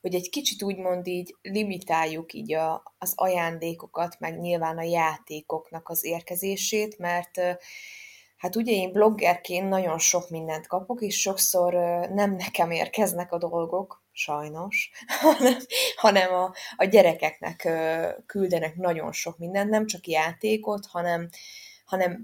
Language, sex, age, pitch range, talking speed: Hungarian, female, 20-39, 165-210 Hz, 120 wpm